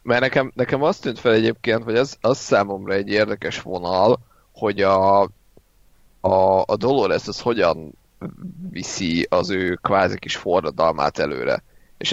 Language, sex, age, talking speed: Hungarian, male, 30-49, 145 wpm